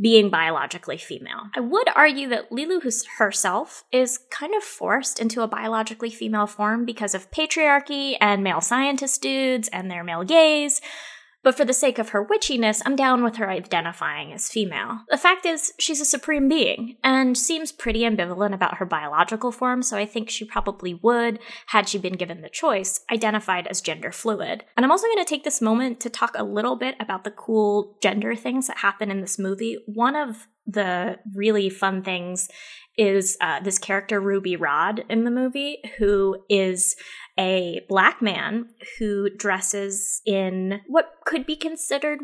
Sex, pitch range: female, 195-255 Hz